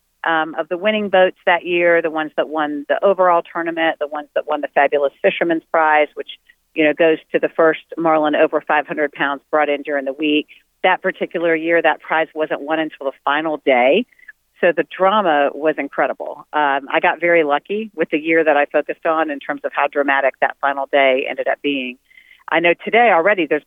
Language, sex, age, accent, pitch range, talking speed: English, female, 40-59, American, 145-175 Hz, 210 wpm